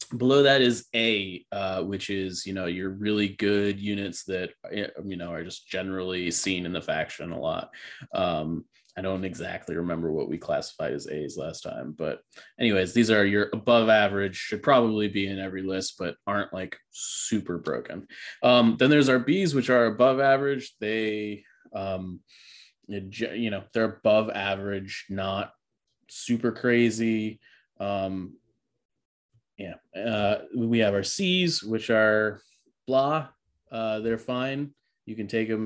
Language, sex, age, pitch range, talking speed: English, male, 20-39, 95-115 Hz, 155 wpm